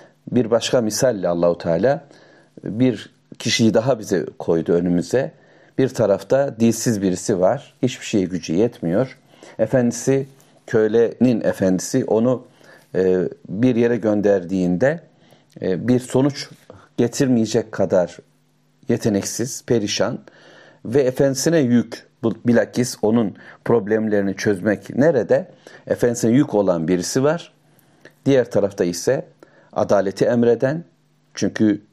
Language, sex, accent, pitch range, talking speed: Turkish, male, native, 100-130 Hz, 100 wpm